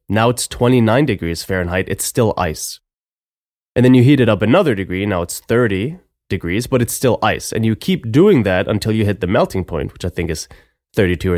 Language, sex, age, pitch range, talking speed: English, male, 20-39, 90-125 Hz, 215 wpm